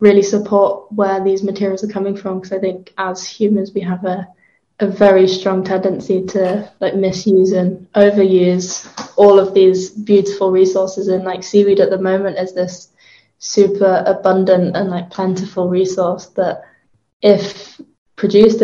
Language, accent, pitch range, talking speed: English, British, 185-200 Hz, 150 wpm